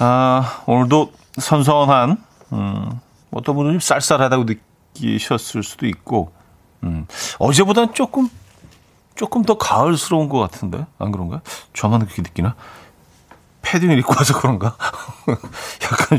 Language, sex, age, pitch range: Korean, male, 40-59, 105-150 Hz